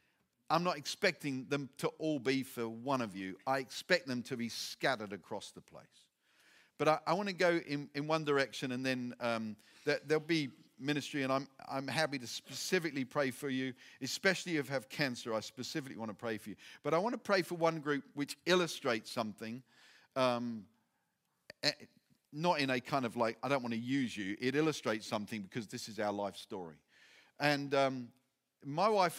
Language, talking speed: English, 195 wpm